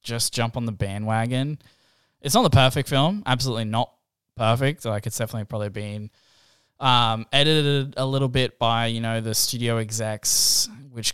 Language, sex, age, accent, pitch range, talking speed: English, male, 10-29, Australian, 110-125 Hz, 160 wpm